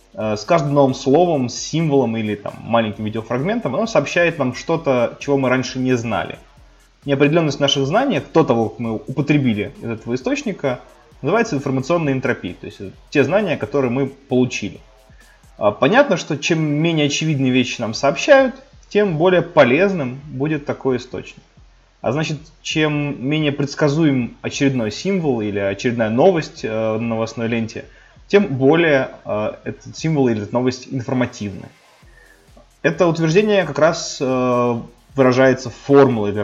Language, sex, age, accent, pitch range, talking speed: Russian, male, 20-39, native, 115-150 Hz, 135 wpm